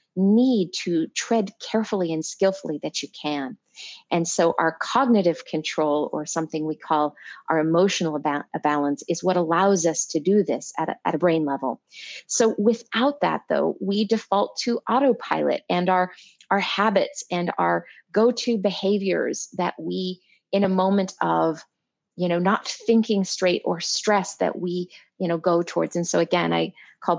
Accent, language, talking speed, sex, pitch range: American, English, 160 wpm, female, 165-205 Hz